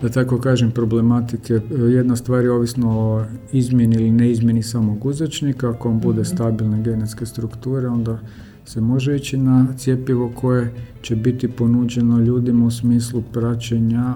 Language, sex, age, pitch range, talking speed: Croatian, male, 50-69, 115-125 Hz, 145 wpm